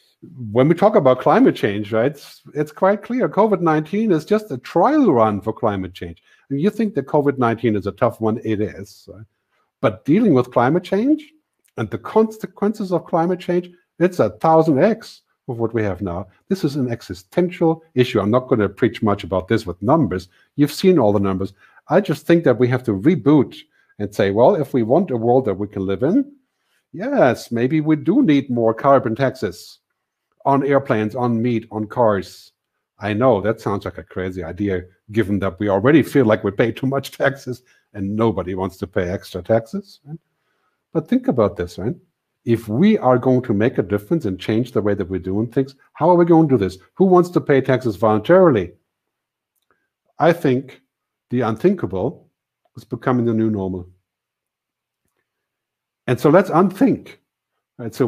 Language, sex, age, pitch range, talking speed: English, male, 50-69, 105-160 Hz, 185 wpm